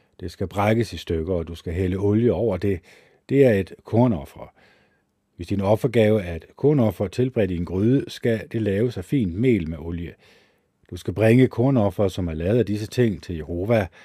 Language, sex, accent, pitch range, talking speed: Danish, male, native, 90-120 Hz, 195 wpm